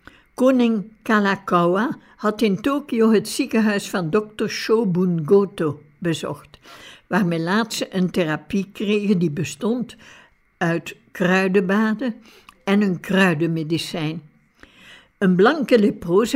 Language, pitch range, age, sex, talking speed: Dutch, 175-225 Hz, 60-79, female, 105 wpm